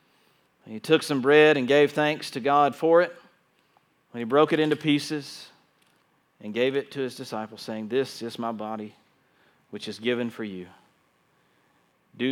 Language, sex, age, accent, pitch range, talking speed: English, male, 40-59, American, 110-140 Hz, 170 wpm